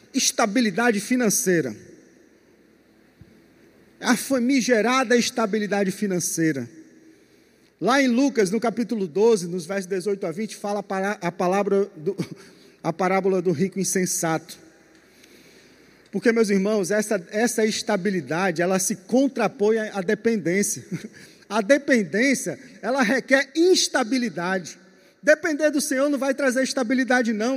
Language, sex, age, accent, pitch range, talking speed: Portuguese, male, 40-59, Brazilian, 200-270 Hz, 110 wpm